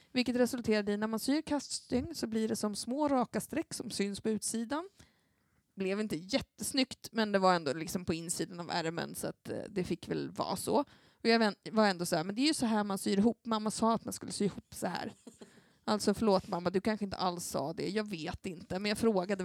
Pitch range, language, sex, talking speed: 175-230 Hz, Swedish, female, 240 wpm